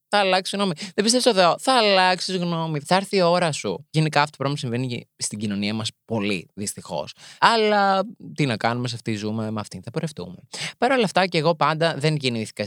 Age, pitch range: 20-39, 110-155 Hz